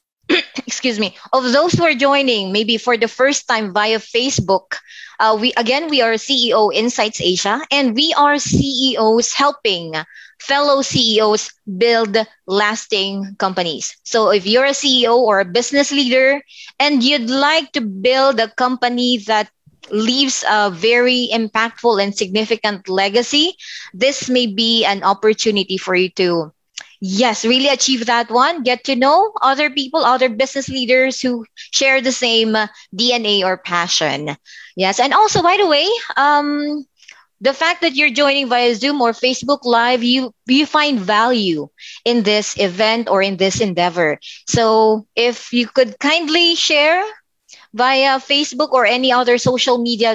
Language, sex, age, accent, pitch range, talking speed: Filipino, female, 20-39, native, 215-275 Hz, 150 wpm